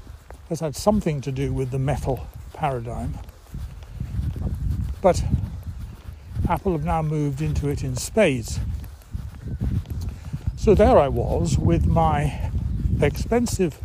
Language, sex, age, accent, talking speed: English, male, 60-79, British, 110 wpm